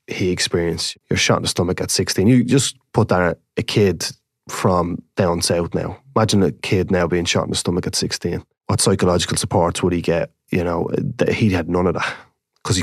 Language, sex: English, male